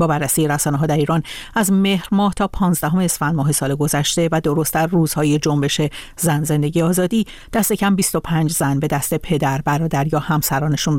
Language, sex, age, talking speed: Persian, female, 50-69, 175 wpm